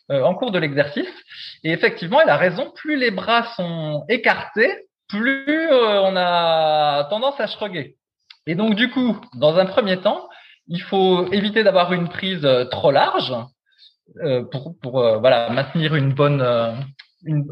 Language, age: French, 20-39